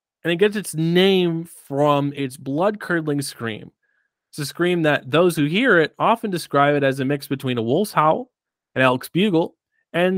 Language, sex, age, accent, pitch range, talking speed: English, male, 30-49, American, 130-185 Hz, 185 wpm